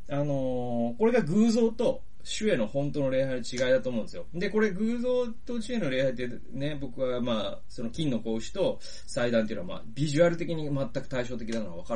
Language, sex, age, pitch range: Japanese, male, 30-49, 110-180 Hz